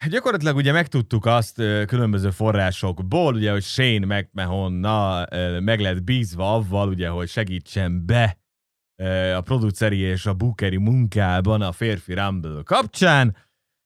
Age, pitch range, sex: 30-49, 95-120 Hz, male